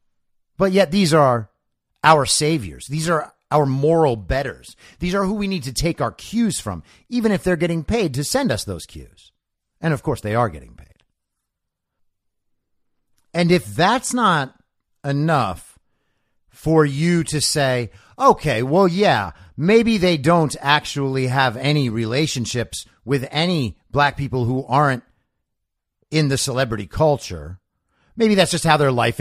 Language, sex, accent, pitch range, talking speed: English, male, American, 105-160 Hz, 150 wpm